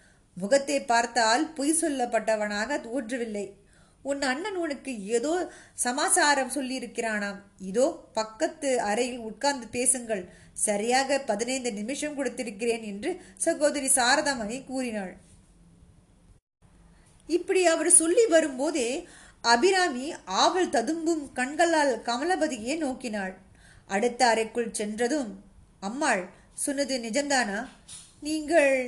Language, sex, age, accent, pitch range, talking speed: Tamil, female, 20-39, native, 235-310 Hz, 85 wpm